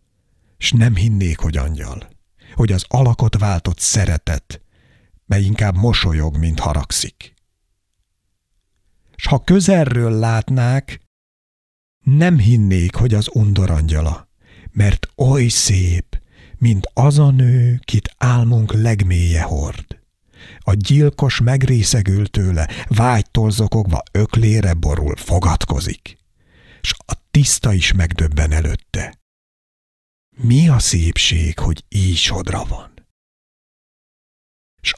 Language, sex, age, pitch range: Hungarian, male, 60-79, 85-125 Hz